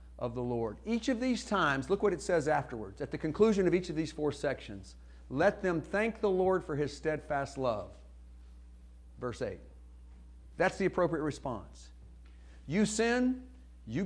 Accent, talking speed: American, 165 wpm